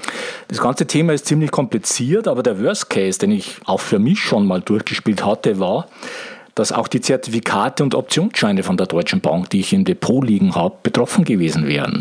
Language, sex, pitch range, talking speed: German, male, 105-165 Hz, 195 wpm